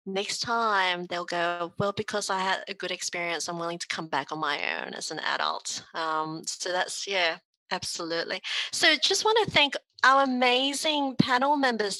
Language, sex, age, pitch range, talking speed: English, female, 30-49, 175-230 Hz, 180 wpm